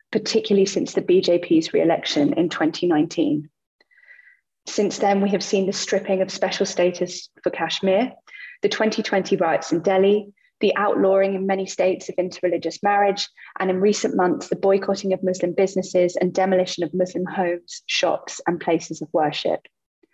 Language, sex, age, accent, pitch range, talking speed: English, female, 20-39, British, 180-205 Hz, 150 wpm